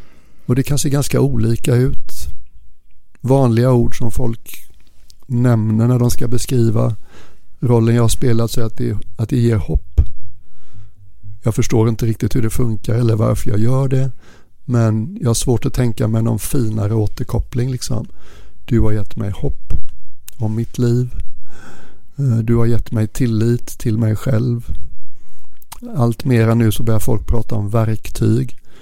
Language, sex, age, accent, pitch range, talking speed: Swedish, male, 60-79, native, 110-125 Hz, 160 wpm